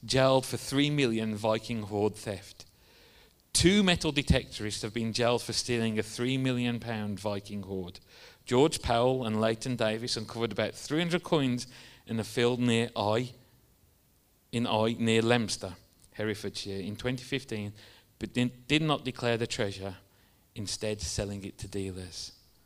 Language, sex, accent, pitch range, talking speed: English, male, British, 105-140 Hz, 145 wpm